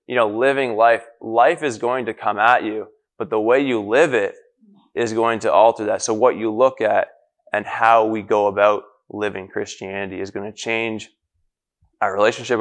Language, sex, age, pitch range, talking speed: English, male, 20-39, 100-115 Hz, 190 wpm